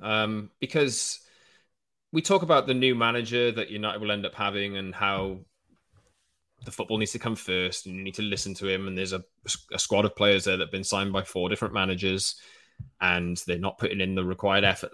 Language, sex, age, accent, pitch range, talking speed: English, male, 20-39, British, 90-110 Hz, 215 wpm